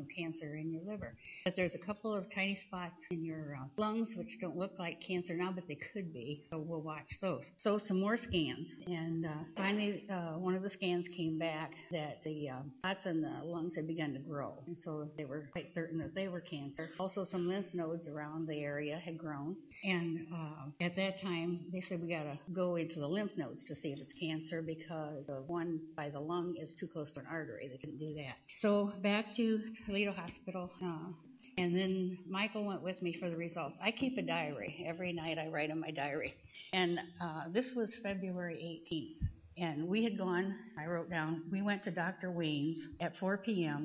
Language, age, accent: English, 60-79, American